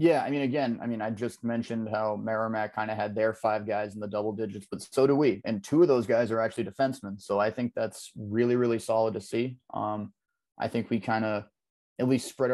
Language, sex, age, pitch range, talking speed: English, male, 30-49, 105-115 Hz, 245 wpm